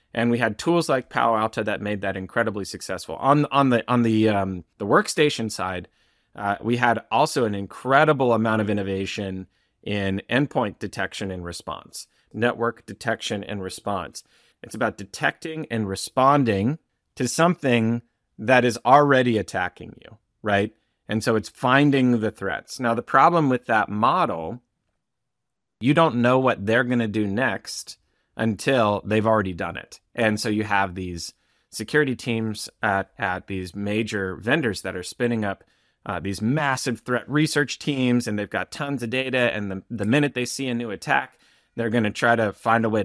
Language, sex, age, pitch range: English, male, 30-49, 100-125 Hz